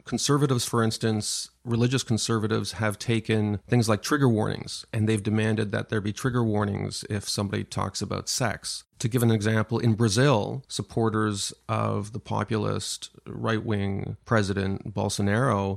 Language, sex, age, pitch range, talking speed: English, male, 40-59, 105-125 Hz, 140 wpm